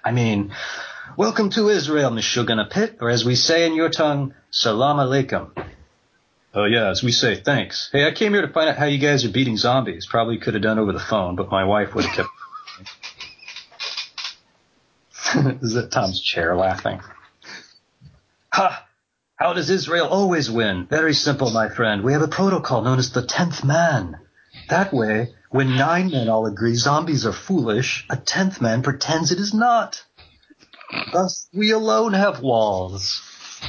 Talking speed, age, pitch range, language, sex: 165 wpm, 40-59, 115-170 Hz, English, male